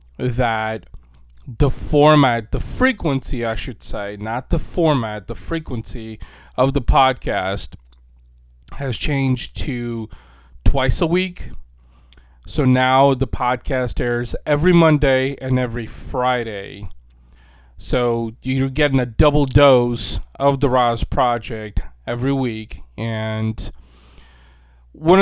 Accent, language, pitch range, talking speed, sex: American, English, 105-145 Hz, 110 wpm, male